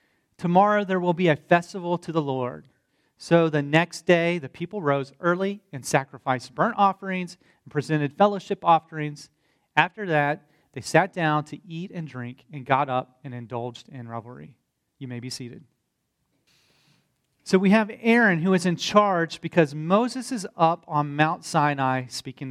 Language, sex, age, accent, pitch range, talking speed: English, male, 40-59, American, 140-185 Hz, 165 wpm